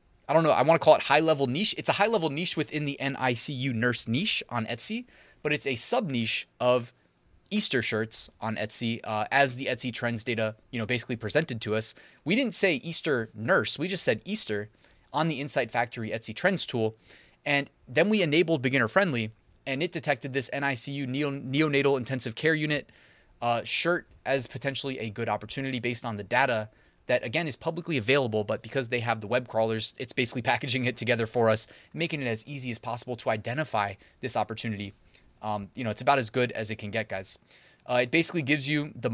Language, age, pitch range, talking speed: English, 20-39, 115-145 Hz, 200 wpm